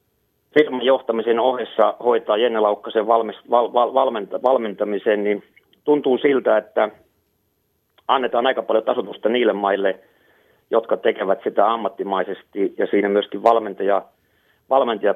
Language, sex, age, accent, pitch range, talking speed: Finnish, male, 30-49, native, 105-120 Hz, 115 wpm